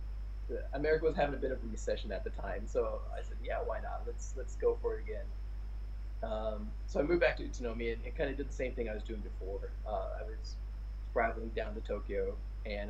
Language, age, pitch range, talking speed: English, 20-39, 105-130 Hz, 235 wpm